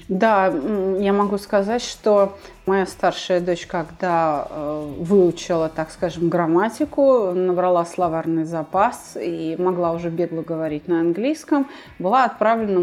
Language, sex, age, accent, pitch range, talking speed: Russian, female, 30-49, native, 185-240 Hz, 115 wpm